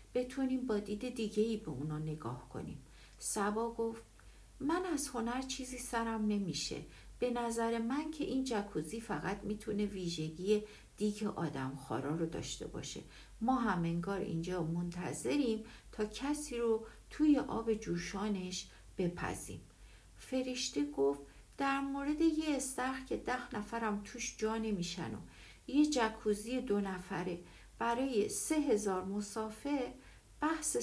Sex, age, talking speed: female, 60-79, 125 wpm